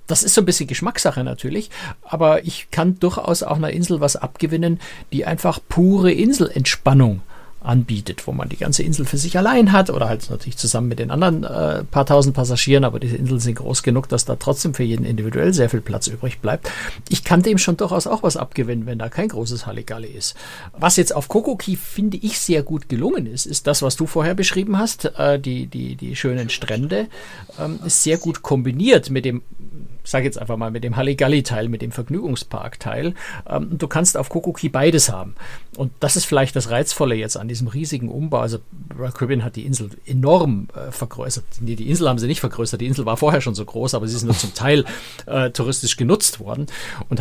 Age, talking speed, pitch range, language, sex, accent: 60-79, 205 wpm, 120-160 Hz, German, male, German